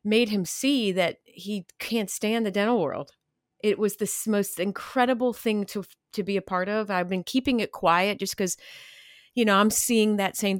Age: 40-59